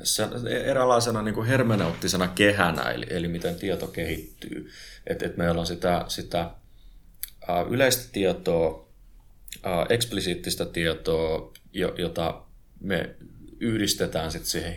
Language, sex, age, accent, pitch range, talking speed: Finnish, male, 30-49, native, 80-95 Hz, 100 wpm